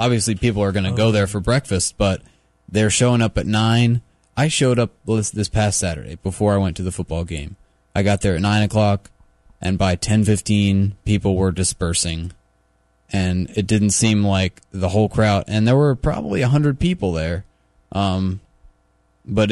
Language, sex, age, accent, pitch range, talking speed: English, male, 20-39, American, 90-110 Hz, 180 wpm